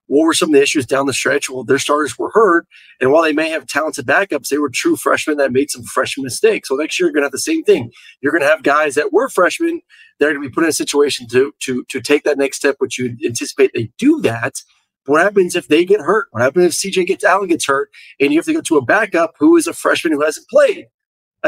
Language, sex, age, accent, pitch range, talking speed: English, male, 30-49, American, 135-215 Hz, 280 wpm